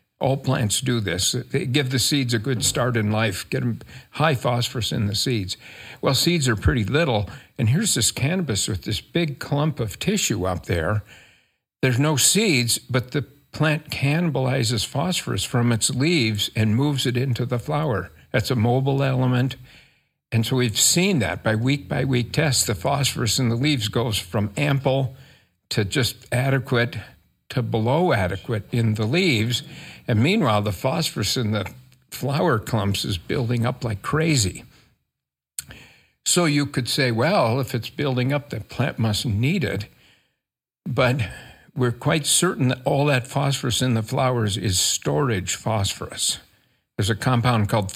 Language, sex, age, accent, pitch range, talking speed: English, male, 50-69, American, 110-140 Hz, 165 wpm